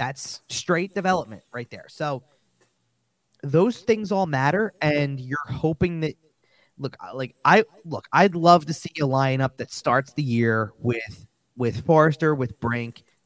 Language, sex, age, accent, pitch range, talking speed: English, male, 20-39, American, 115-135 Hz, 150 wpm